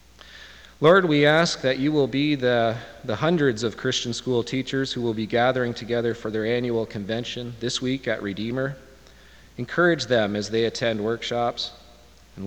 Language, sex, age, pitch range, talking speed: English, male, 40-59, 105-130 Hz, 165 wpm